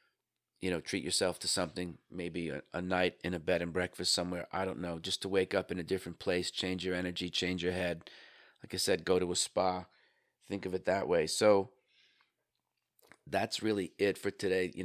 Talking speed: 210 wpm